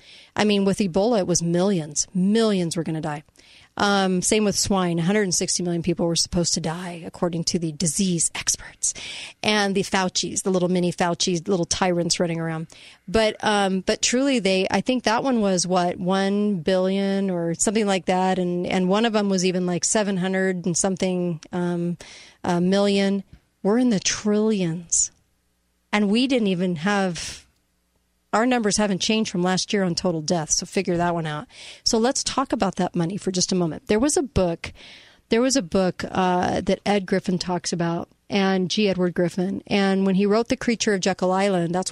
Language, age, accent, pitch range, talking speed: English, 40-59, American, 175-205 Hz, 190 wpm